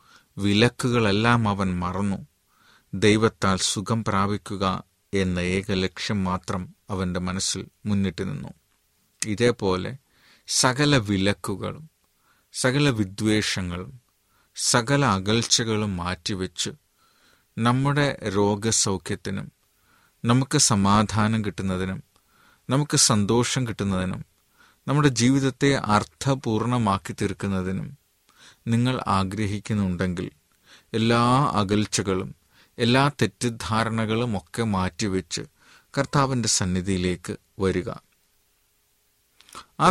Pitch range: 95-120 Hz